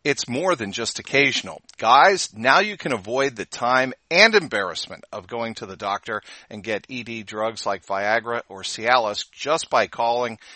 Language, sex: English, male